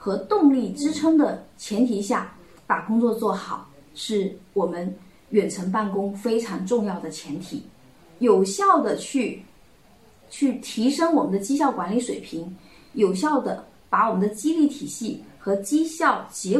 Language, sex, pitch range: Chinese, female, 195-270 Hz